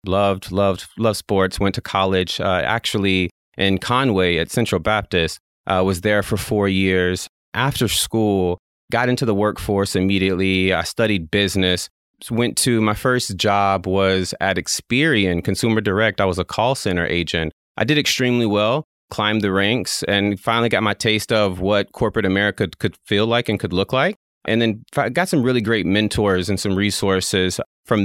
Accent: American